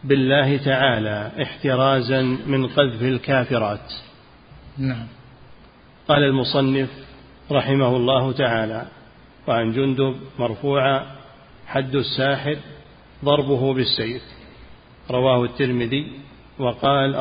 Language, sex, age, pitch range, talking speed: Arabic, male, 50-69, 125-140 Hz, 75 wpm